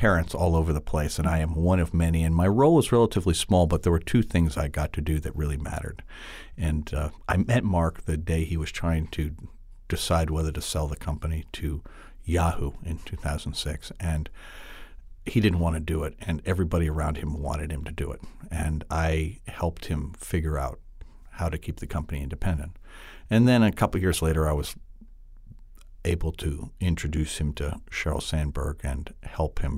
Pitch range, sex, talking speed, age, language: 75-90 Hz, male, 195 wpm, 50-69, English